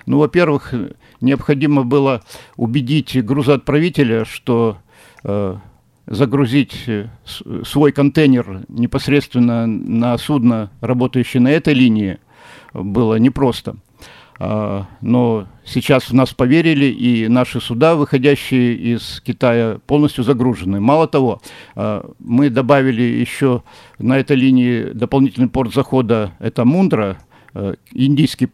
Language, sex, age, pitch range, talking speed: Russian, male, 50-69, 115-140 Hz, 105 wpm